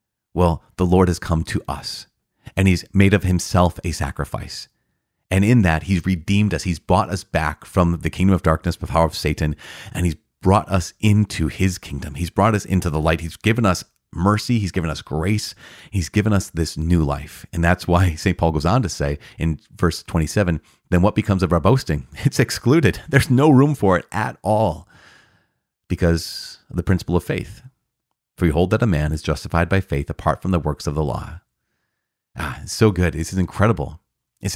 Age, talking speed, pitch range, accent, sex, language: 30-49, 200 wpm, 80-100 Hz, American, male, English